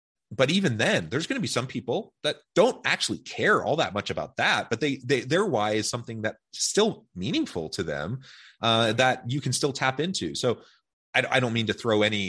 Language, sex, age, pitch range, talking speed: English, male, 30-49, 95-125 Hz, 220 wpm